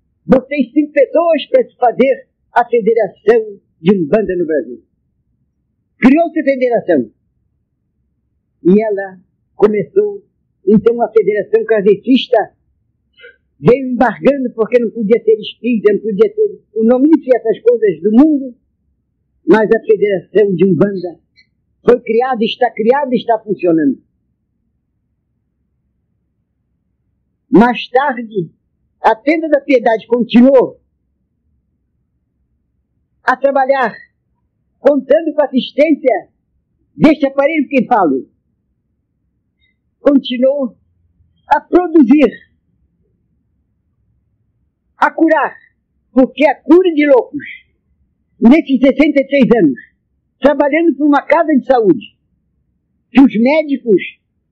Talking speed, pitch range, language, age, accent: 100 wpm, 220-290 Hz, Portuguese, 50-69, Brazilian